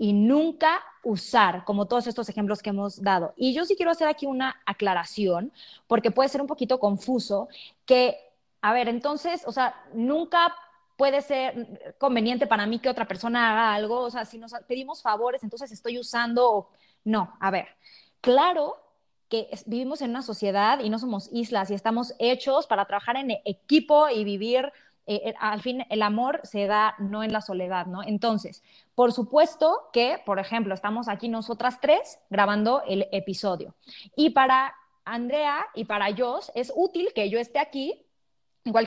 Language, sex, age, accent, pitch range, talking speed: Spanish, female, 20-39, Mexican, 210-265 Hz, 170 wpm